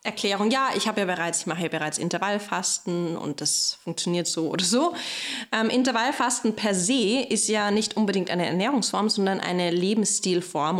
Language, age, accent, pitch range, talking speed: German, 20-39, German, 175-230 Hz, 165 wpm